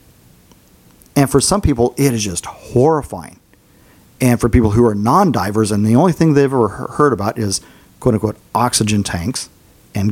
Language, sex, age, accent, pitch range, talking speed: English, male, 40-59, American, 105-130 Hz, 160 wpm